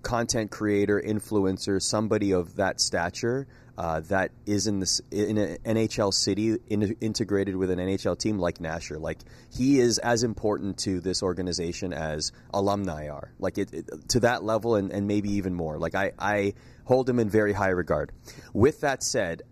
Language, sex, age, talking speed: English, male, 30-49, 180 wpm